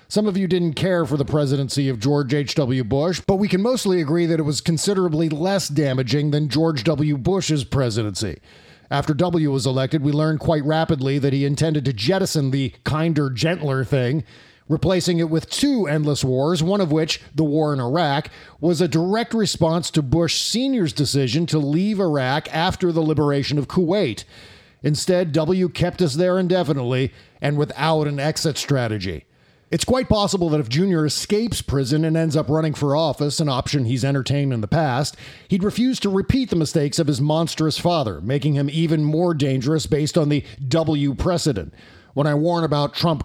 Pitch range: 140-170 Hz